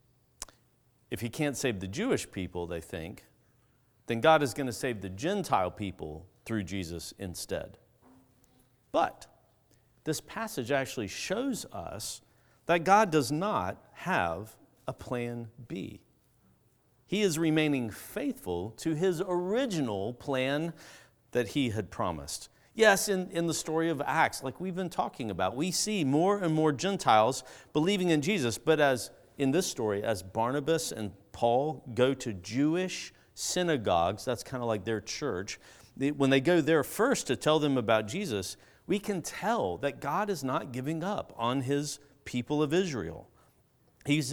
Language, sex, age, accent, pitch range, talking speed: English, male, 50-69, American, 110-160 Hz, 150 wpm